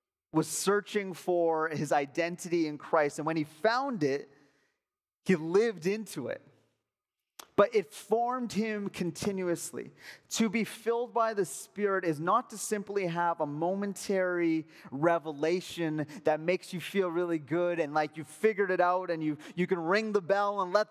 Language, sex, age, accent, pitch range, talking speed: English, male, 30-49, American, 155-195 Hz, 160 wpm